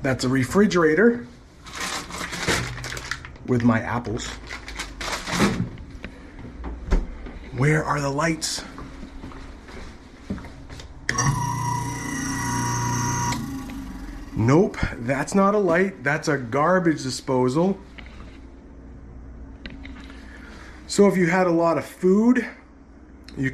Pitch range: 115-175 Hz